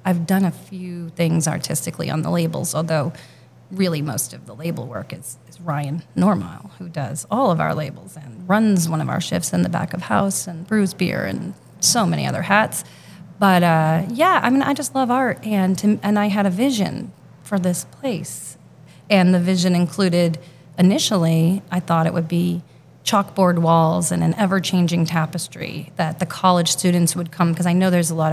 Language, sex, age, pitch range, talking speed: English, female, 30-49, 165-190 Hz, 195 wpm